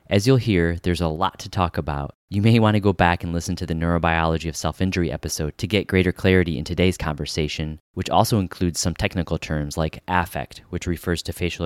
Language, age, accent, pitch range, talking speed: English, 30-49, American, 85-100 Hz, 215 wpm